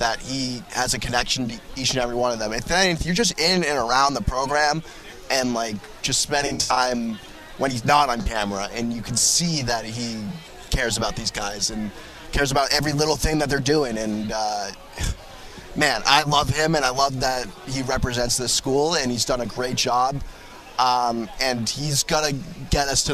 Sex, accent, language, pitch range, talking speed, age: male, American, English, 120-145 Hz, 200 wpm, 20-39